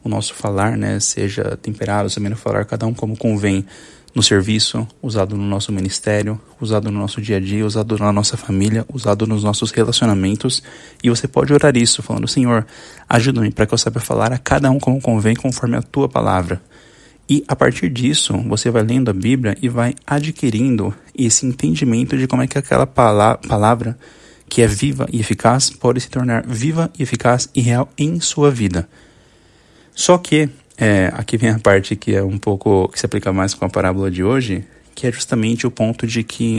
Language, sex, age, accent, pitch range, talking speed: Portuguese, male, 20-39, Brazilian, 105-130 Hz, 195 wpm